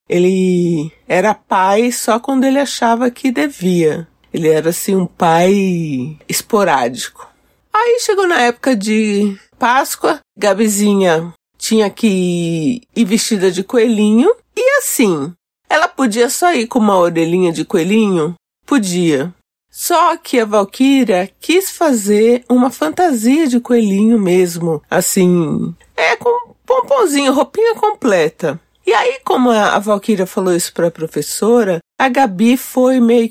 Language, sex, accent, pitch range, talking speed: Portuguese, female, Brazilian, 190-265 Hz, 130 wpm